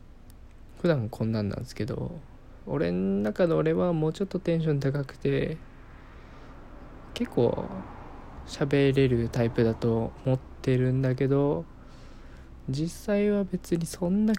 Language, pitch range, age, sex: Japanese, 115-150 Hz, 20-39, male